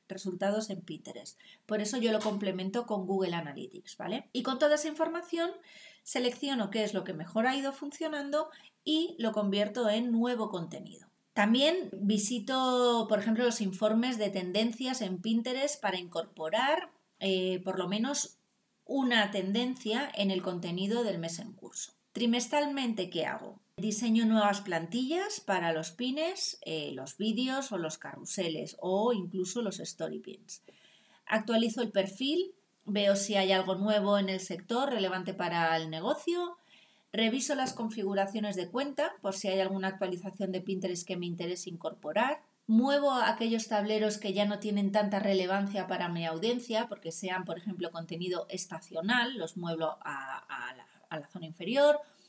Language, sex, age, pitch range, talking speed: Spanish, female, 30-49, 190-245 Hz, 155 wpm